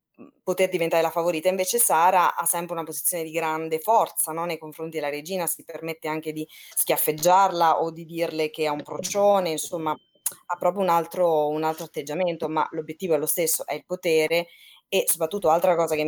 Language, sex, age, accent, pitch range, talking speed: Italian, female, 20-39, native, 155-180 Hz, 190 wpm